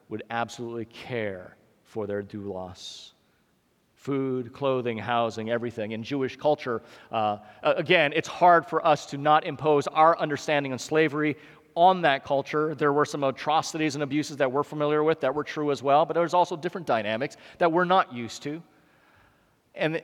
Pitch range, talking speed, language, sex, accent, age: 135-195 Hz, 170 wpm, English, male, American, 40-59